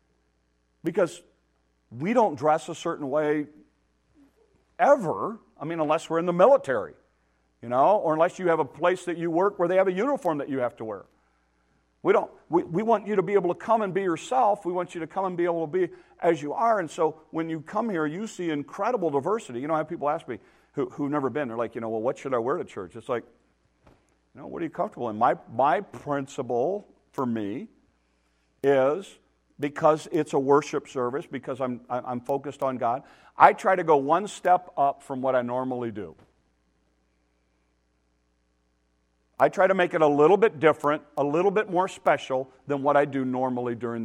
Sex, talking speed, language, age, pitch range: male, 205 wpm, English, 50-69, 110-170 Hz